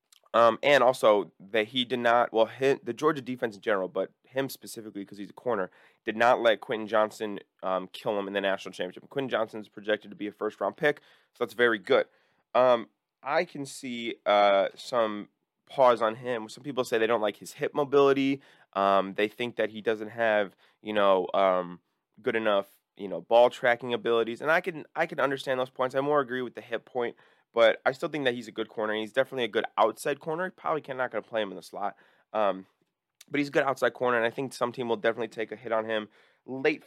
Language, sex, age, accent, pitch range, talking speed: English, male, 20-39, American, 105-130 Hz, 230 wpm